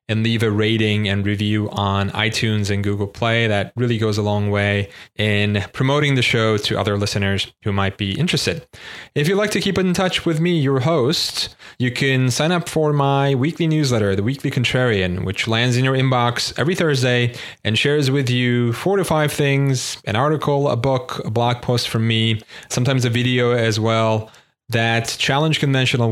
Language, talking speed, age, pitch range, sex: English, 190 wpm, 30-49, 105-135 Hz, male